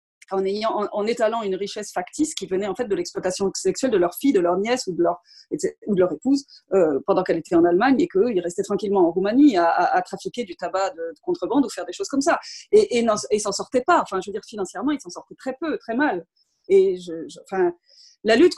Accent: French